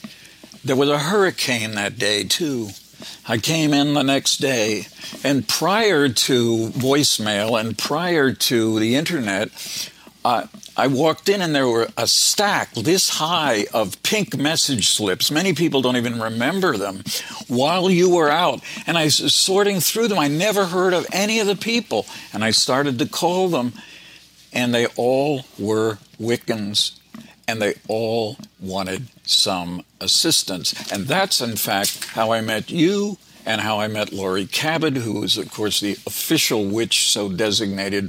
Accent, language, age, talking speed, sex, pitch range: American, English, 60-79, 160 wpm, male, 105-155 Hz